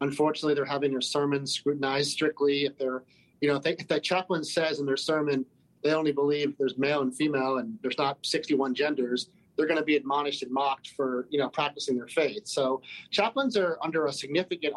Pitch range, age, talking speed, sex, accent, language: 130-150 Hz, 30-49, 205 wpm, male, American, English